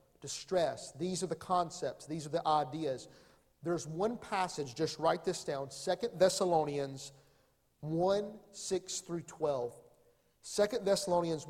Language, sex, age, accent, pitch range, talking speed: English, male, 40-59, American, 155-195 Hz, 125 wpm